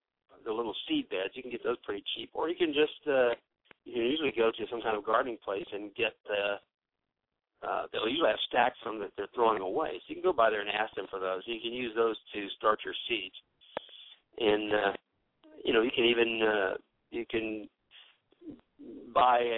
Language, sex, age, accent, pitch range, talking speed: English, male, 50-69, American, 105-140 Hz, 210 wpm